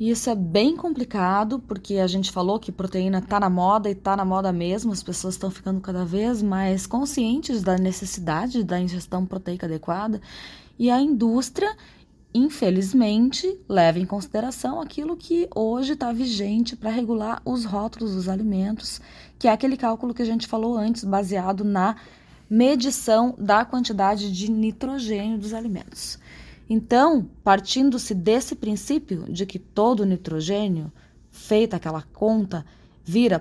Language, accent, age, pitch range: Portuguese, Brazilian, 20-39, 190-235 Hz